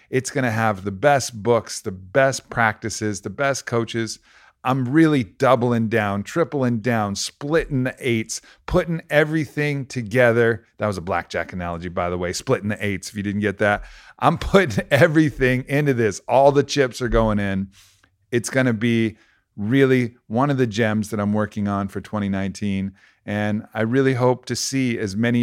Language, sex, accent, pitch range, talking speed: English, male, American, 105-130 Hz, 175 wpm